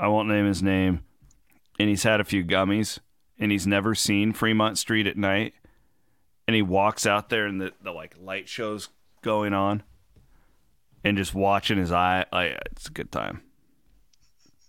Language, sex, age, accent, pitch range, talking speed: English, male, 40-59, American, 100-125 Hz, 175 wpm